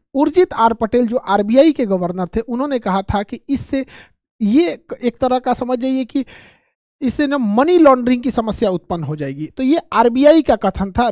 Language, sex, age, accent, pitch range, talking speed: Hindi, male, 50-69, native, 225-280 Hz, 190 wpm